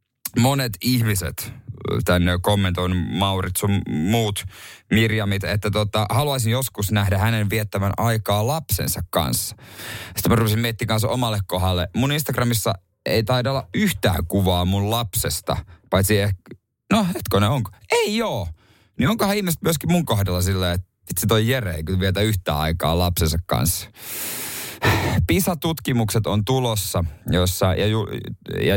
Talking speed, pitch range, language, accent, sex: 135 wpm, 90-115 Hz, Finnish, native, male